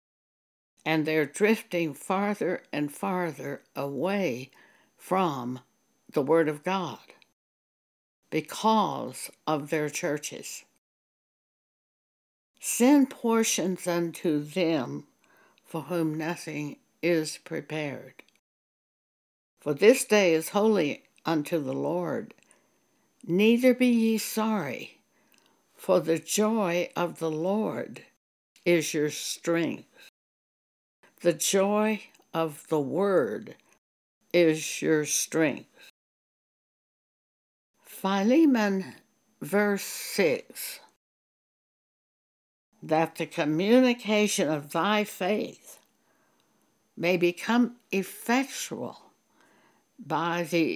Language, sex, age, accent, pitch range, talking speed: English, female, 60-79, American, 155-205 Hz, 80 wpm